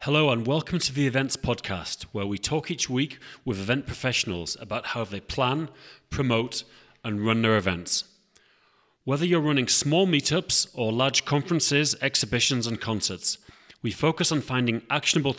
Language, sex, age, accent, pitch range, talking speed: English, male, 30-49, British, 115-140 Hz, 155 wpm